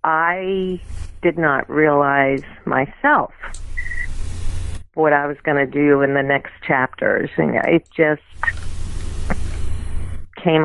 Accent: American